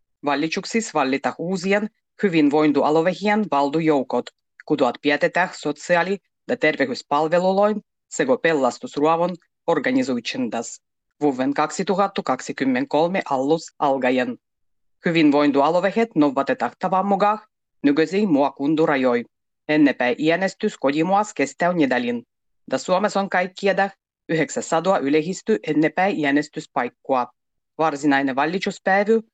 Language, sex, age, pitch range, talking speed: Finnish, female, 30-49, 140-190 Hz, 80 wpm